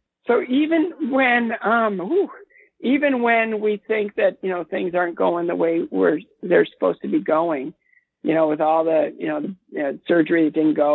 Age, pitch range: 50-69, 160-215 Hz